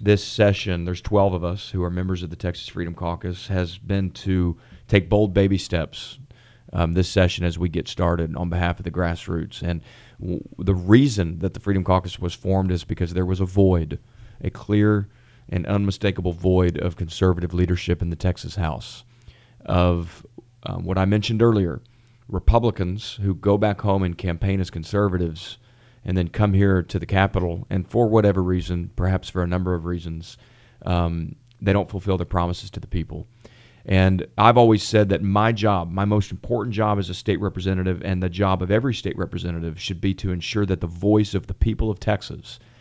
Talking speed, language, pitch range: 190 wpm, English, 90-105 Hz